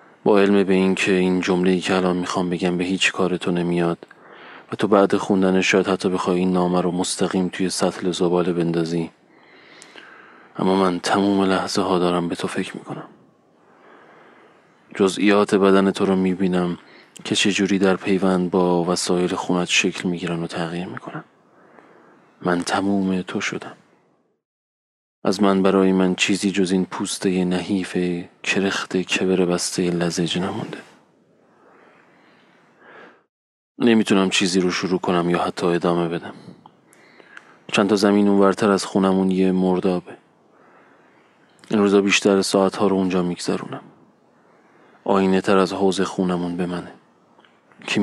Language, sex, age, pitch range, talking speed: Persian, male, 30-49, 90-100 Hz, 135 wpm